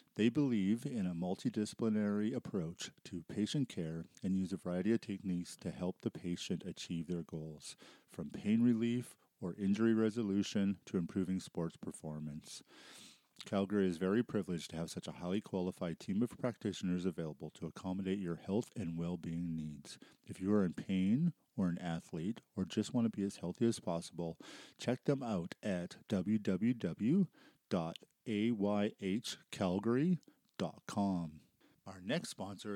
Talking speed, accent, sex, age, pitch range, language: 145 wpm, American, male, 40-59, 90-110 Hz, English